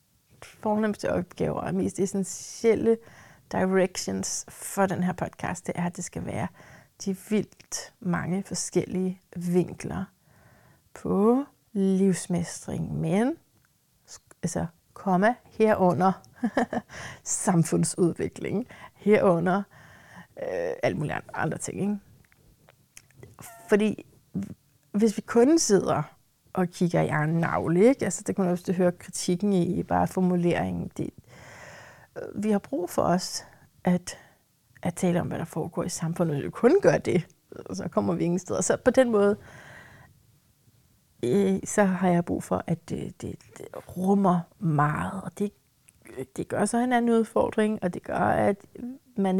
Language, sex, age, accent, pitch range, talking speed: Danish, female, 30-49, native, 175-210 Hz, 130 wpm